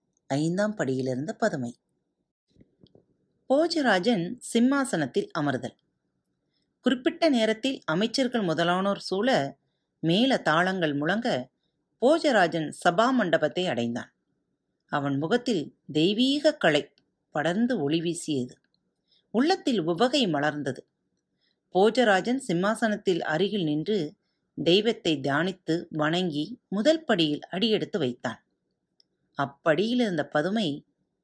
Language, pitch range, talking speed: Tamil, 155-230 Hz, 75 wpm